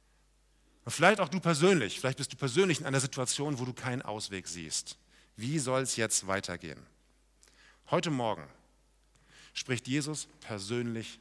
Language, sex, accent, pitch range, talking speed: German, male, German, 120-155 Hz, 140 wpm